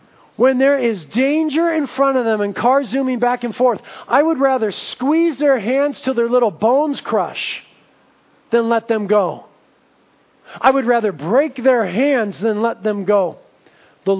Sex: male